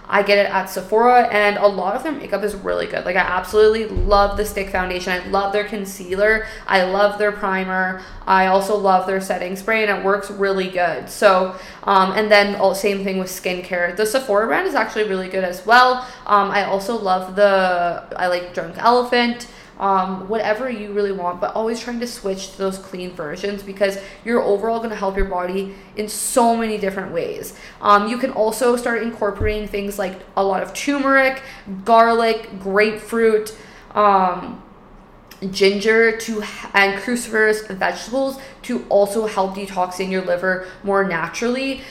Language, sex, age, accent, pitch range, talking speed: English, female, 20-39, American, 190-225 Hz, 175 wpm